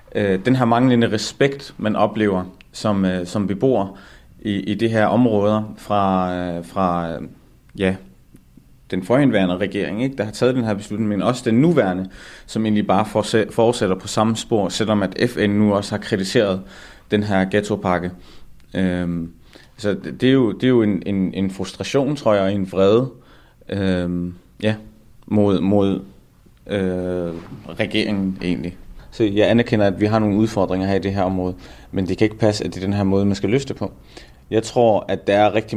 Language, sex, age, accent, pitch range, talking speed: Danish, male, 30-49, native, 95-110 Hz, 180 wpm